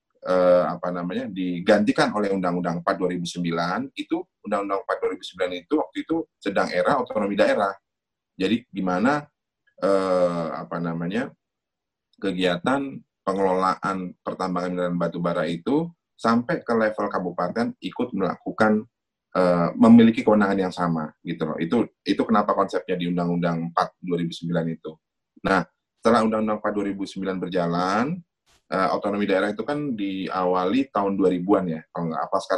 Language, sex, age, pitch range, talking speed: Indonesian, male, 30-49, 90-110 Hz, 130 wpm